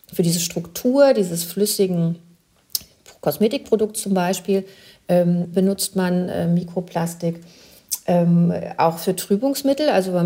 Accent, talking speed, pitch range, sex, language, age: German, 110 wpm, 170-205 Hz, female, German, 40-59